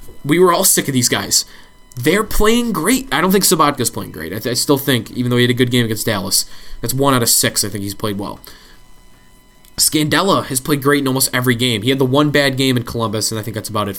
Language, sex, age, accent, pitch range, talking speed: English, male, 20-39, American, 115-150 Hz, 260 wpm